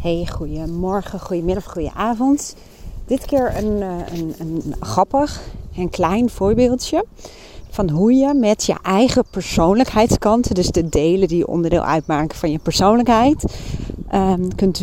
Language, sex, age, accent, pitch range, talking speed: Dutch, female, 40-59, Dutch, 185-250 Hz, 125 wpm